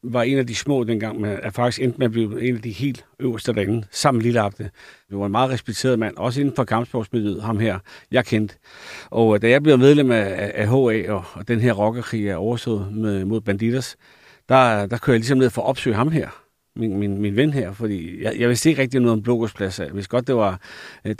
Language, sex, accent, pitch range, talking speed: Danish, male, native, 110-135 Hz, 230 wpm